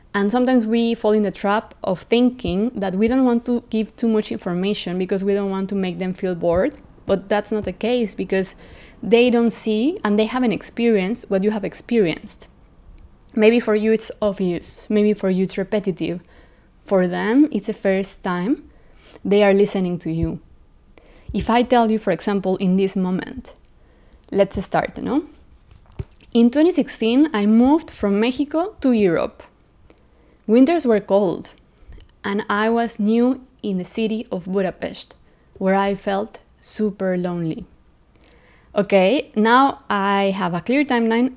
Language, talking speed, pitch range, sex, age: English, 160 wpm, 190-235 Hz, female, 20-39